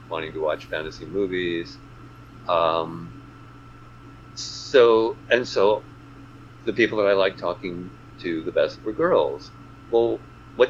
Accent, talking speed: American, 125 wpm